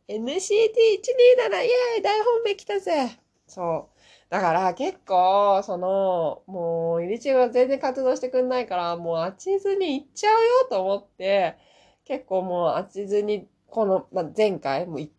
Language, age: Japanese, 20-39